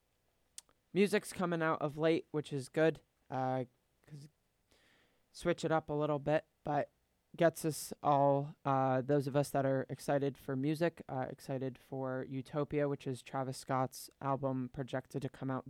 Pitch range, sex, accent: 130-145 Hz, male, American